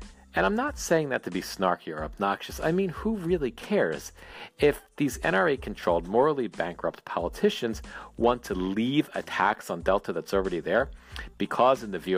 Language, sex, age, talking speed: English, male, 40-59, 170 wpm